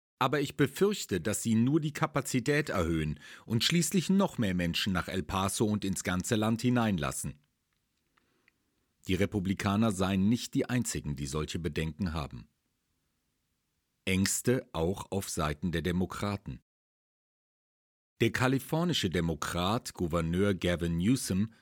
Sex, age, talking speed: male, 40-59, 120 wpm